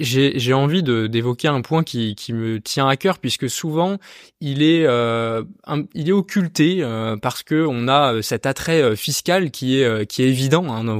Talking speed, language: 205 wpm, French